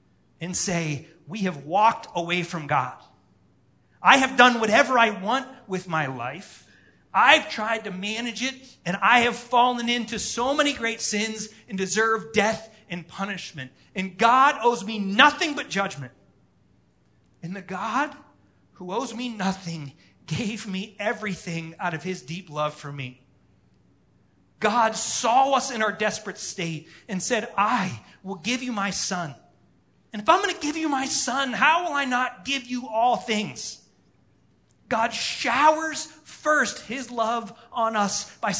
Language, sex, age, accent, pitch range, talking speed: English, male, 30-49, American, 180-245 Hz, 155 wpm